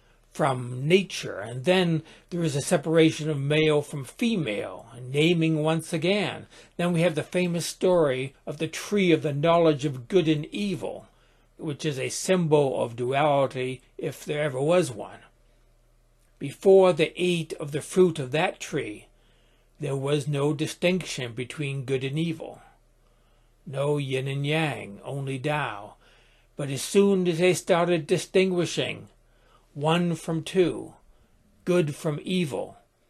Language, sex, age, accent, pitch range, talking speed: English, male, 60-79, American, 135-170 Hz, 140 wpm